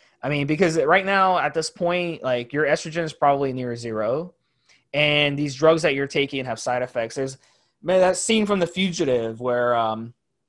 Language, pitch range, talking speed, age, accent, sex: English, 125-165 Hz, 190 wpm, 20-39, American, male